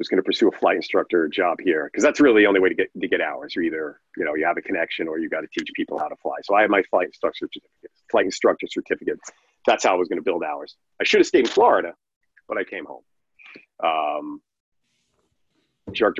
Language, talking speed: English, 250 wpm